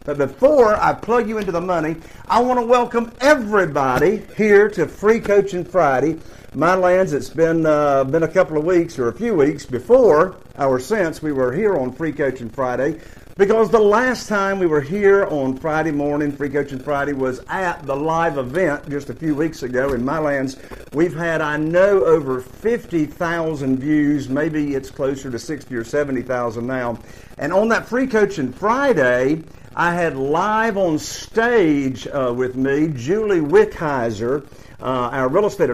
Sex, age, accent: male, 50-69, American